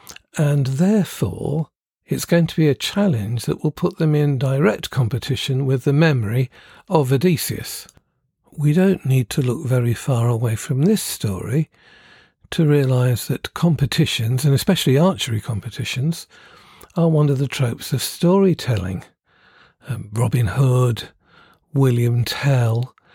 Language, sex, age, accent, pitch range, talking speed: English, male, 50-69, British, 125-155 Hz, 130 wpm